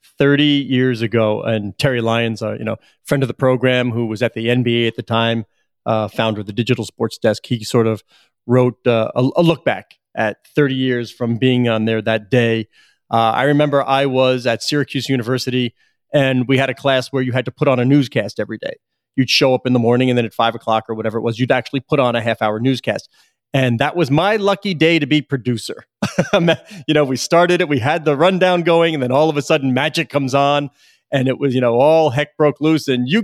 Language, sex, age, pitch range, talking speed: English, male, 30-49, 125-160 Hz, 235 wpm